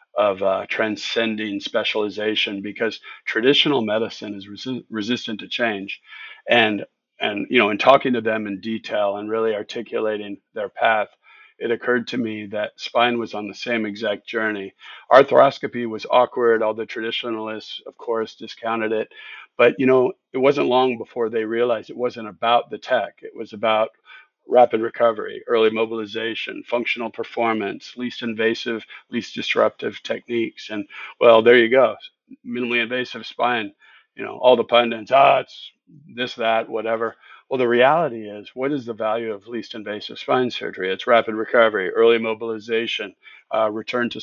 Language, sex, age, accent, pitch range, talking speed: English, male, 50-69, American, 105-120 Hz, 155 wpm